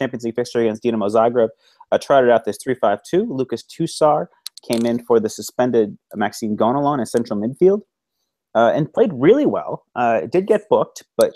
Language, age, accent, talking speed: English, 30-49, American, 175 wpm